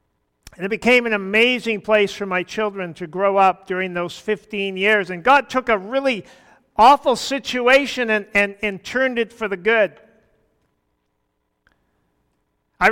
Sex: male